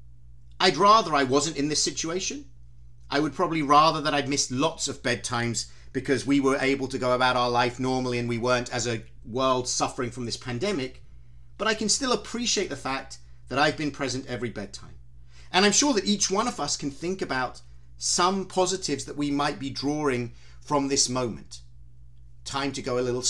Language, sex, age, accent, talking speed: English, male, 40-59, British, 195 wpm